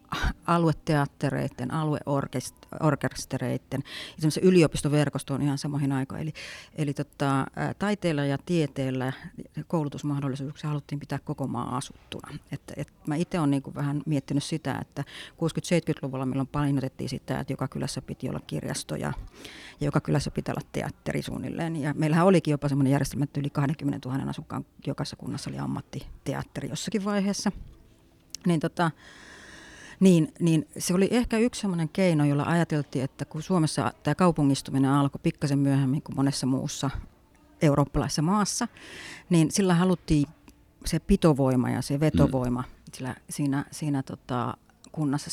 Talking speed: 130 wpm